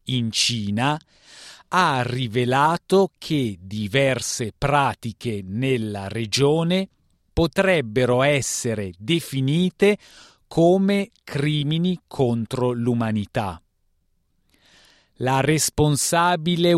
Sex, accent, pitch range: male, native, 115-165 Hz